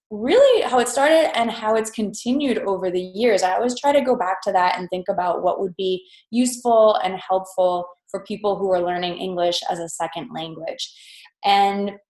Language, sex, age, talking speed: English, female, 20-39, 195 wpm